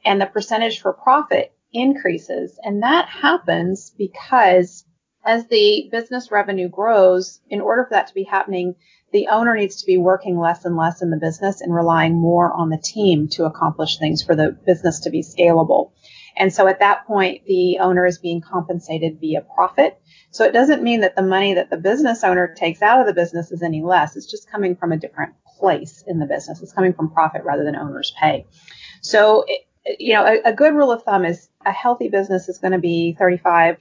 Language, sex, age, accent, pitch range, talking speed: English, female, 30-49, American, 170-210 Hz, 205 wpm